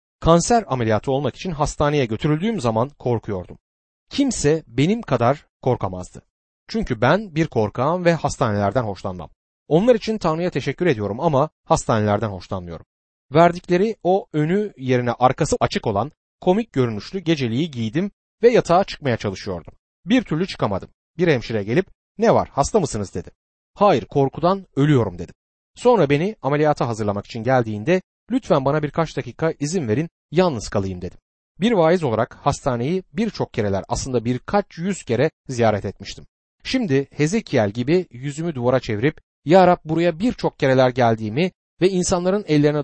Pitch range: 110-170 Hz